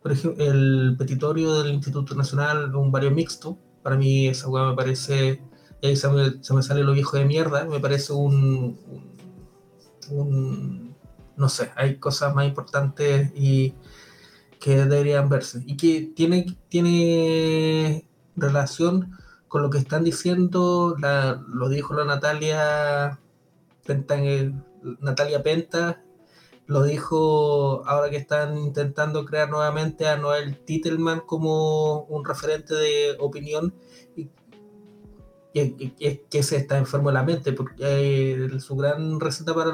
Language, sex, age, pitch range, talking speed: Spanish, male, 20-39, 140-160 Hz, 140 wpm